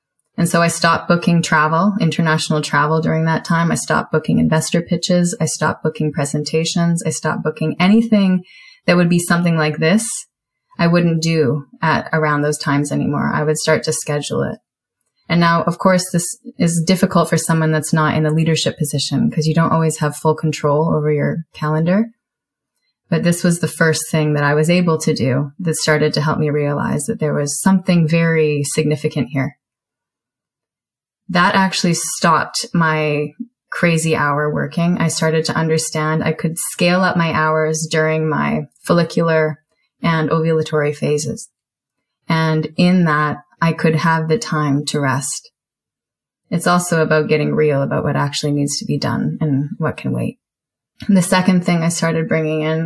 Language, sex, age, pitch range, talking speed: English, female, 20-39, 155-170 Hz, 170 wpm